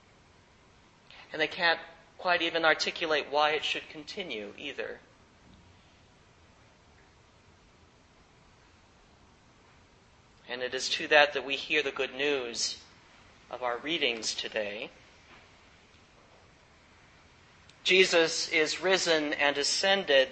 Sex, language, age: male, English, 40-59